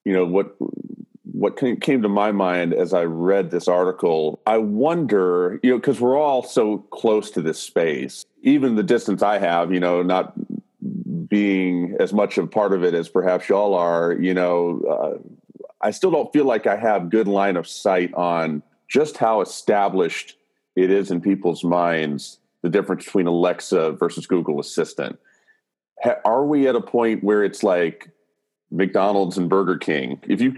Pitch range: 90-120 Hz